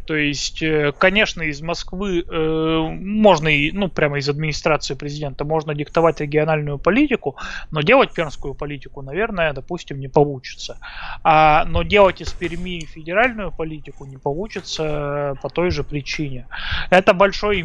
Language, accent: Russian, native